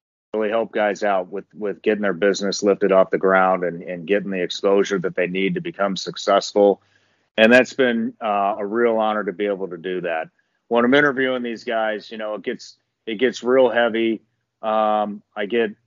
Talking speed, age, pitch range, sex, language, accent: 195 wpm, 30-49, 95-115 Hz, male, English, American